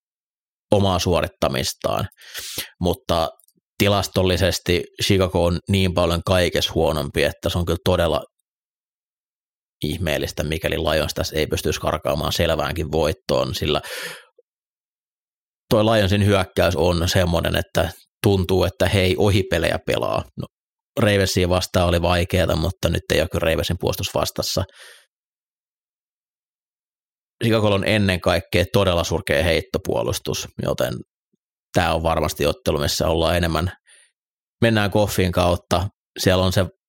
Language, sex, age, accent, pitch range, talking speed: Finnish, male, 30-49, native, 85-95 Hz, 115 wpm